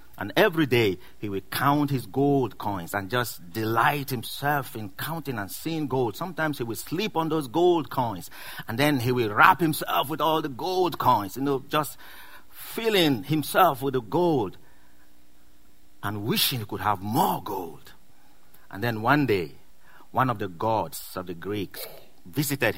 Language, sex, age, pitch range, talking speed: English, male, 50-69, 105-155 Hz, 170 wpm